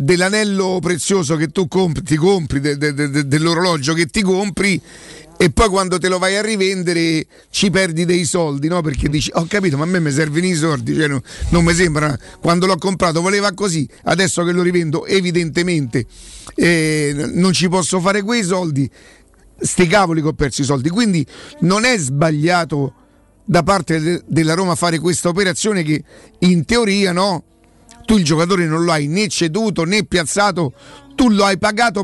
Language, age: Italian, 50-69